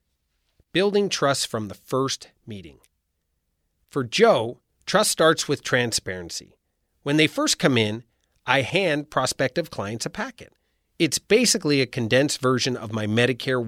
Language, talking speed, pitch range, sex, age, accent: English, 135 wpm, 110-150 Hz, male, 40-59, American